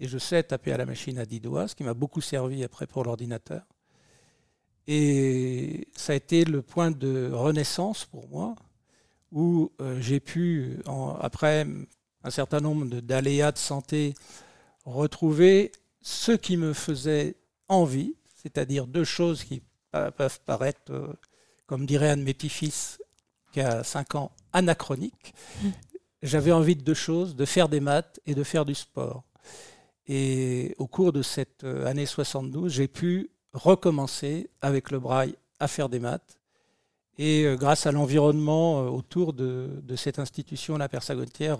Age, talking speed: 60-79, 150 wpm